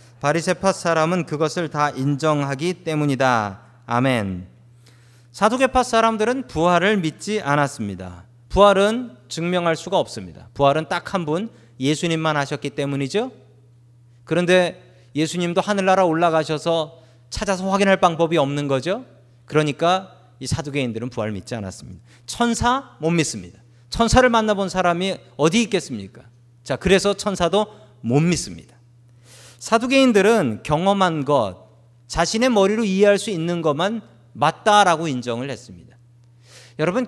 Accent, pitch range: native, 120-190 Hz